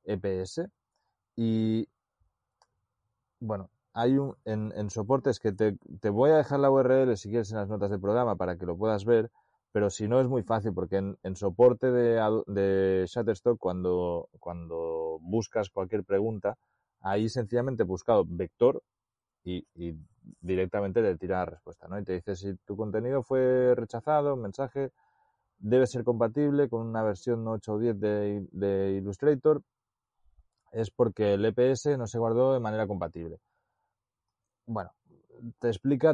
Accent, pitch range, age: Spanish, 100-125 Hz, 30-49